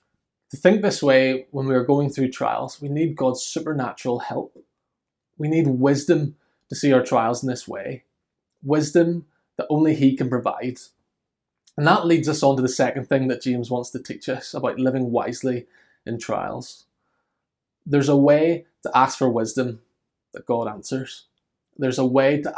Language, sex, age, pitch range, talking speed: English, male, 20-39, 125-150 Hz, 175 wpm